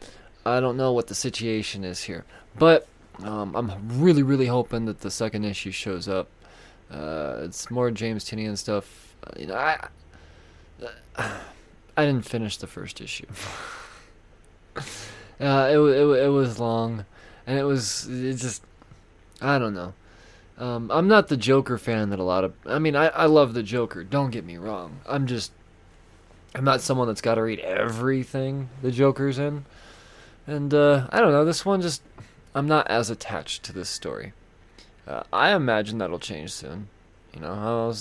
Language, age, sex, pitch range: English, 20-39, male, 95-125 Hz